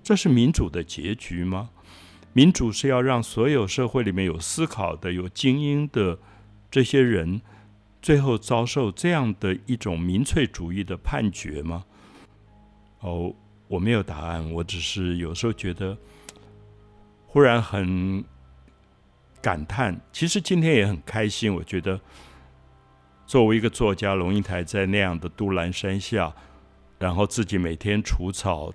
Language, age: Chinese, 60-79